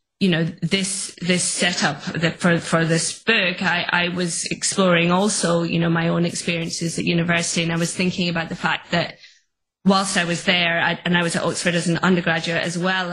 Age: 20-39